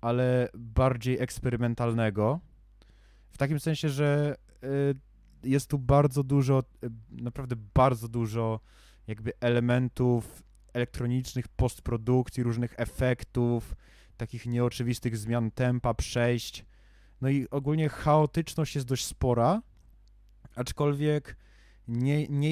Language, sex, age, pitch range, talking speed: Polish, male, 20-39, 110-135 Hz, 95 wpm